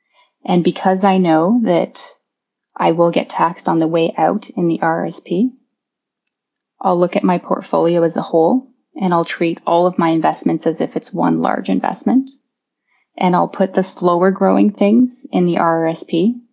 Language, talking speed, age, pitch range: English, 170 wpm, 20-39, 170-240 Hz